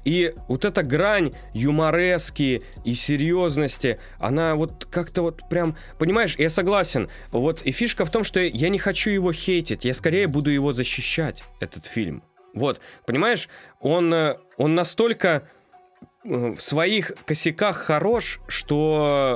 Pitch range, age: 125-175 Hz, 20-39